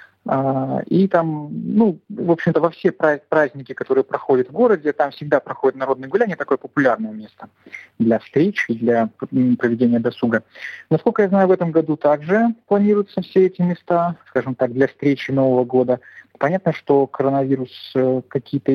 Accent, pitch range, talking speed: native, 125-155 Hz, 145 wpm